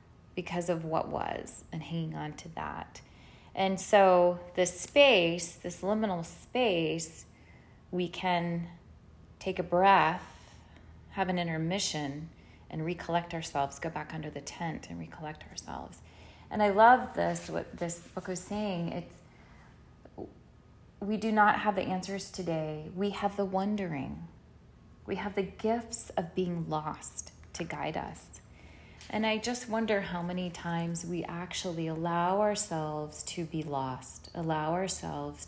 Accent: American